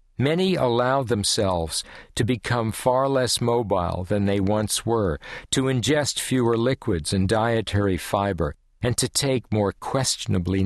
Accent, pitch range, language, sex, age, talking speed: American, 85-120 Hz, English, male, 60-79, 135 wpm